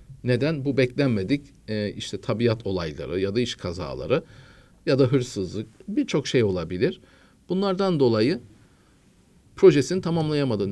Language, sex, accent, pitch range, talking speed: Turkish, male, native, 100-135 Hz, 110 wpm